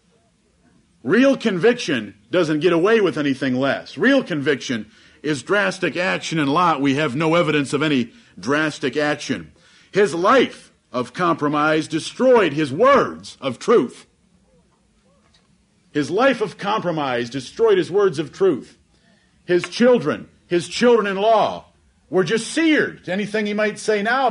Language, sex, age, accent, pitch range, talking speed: English, male, 50-69, American, 150-210 Hz, 135 wpm